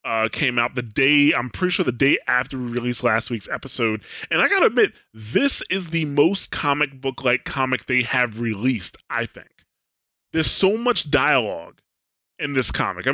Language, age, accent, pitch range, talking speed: English, 20-39, American, 110-140 Hz, 185 wpm